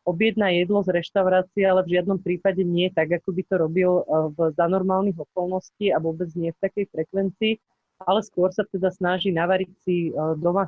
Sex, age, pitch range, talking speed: female, 30-49, 170-215 Hz, 175 wpm